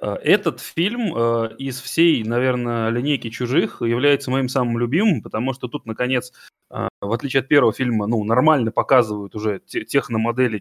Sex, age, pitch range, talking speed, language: male, 20-39, 110-135 Hz, 140 wpm, Russian